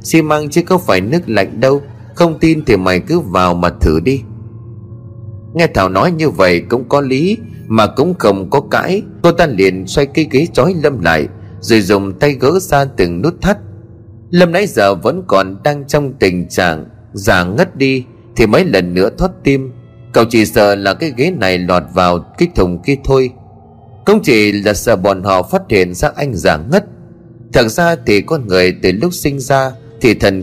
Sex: male